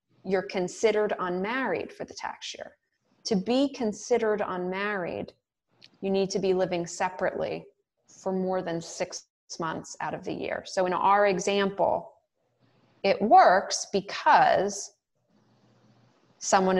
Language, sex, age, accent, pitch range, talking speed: English, female, 20-39, American, 170-205 Hz, 120 wpm